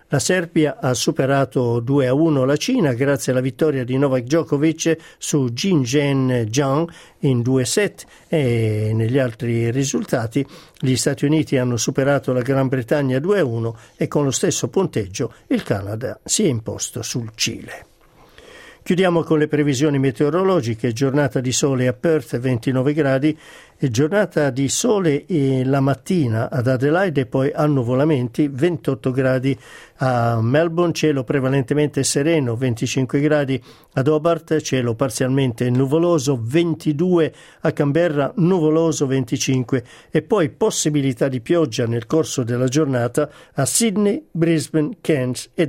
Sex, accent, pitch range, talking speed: male, native, 130-160 Hz, 130 wpm